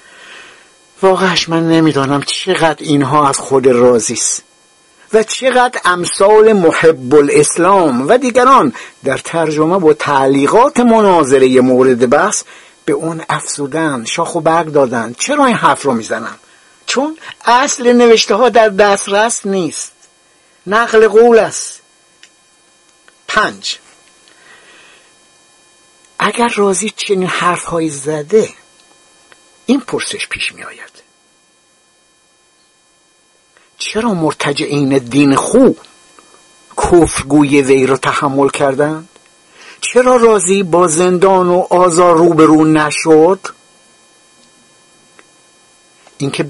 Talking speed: 95 wpm